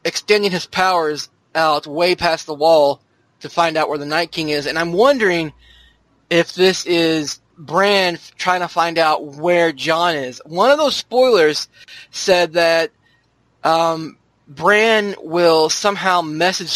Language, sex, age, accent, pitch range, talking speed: English, male, 20-39, American, 145-180 Hz, 145 wpm